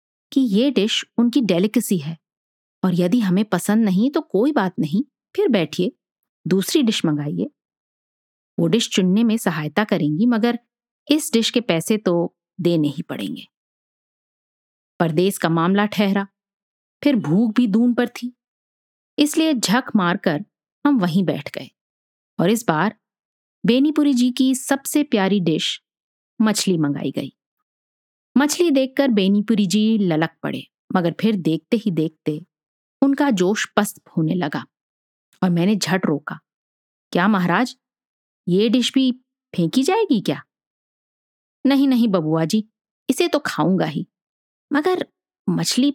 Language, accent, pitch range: Hindi, native, 180-245 Hz